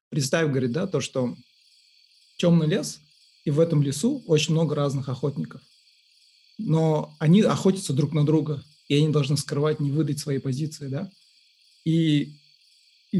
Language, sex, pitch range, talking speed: Russian, male, 135-165 Hz, 145 wpm